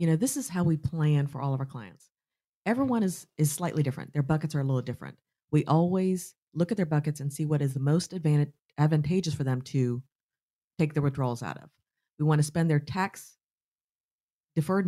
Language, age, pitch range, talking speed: English, 40-59, 140-165 Hz, 205 wpm